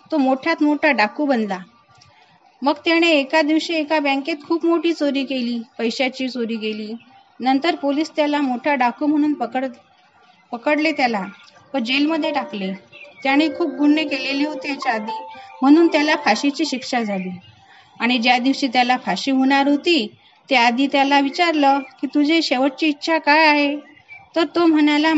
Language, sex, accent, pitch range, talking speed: Marathi, female, native, 260-315 Hz, 150 wpm